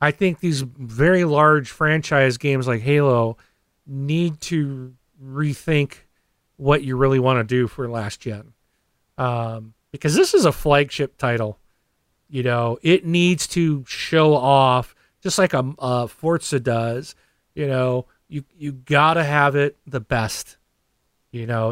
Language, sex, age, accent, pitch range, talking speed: English, male, 40-59, American, 120-155 Hz, 145 wpm